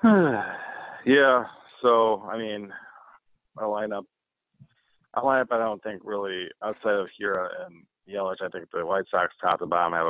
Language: English